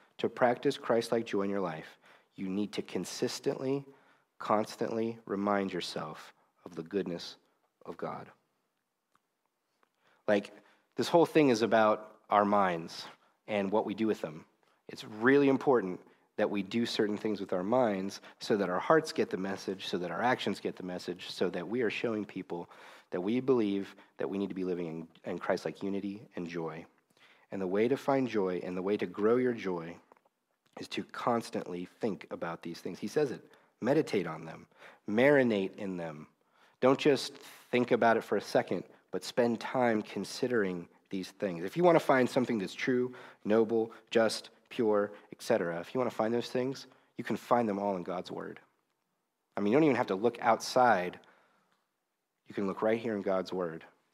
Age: 40-59